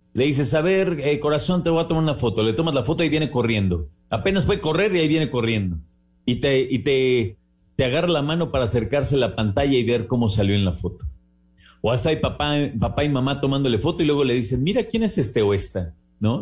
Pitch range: 100-140 Hz